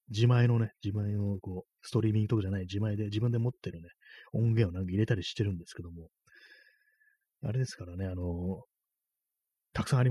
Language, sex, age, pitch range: Japanese, male, 30-49, 90-120 Hz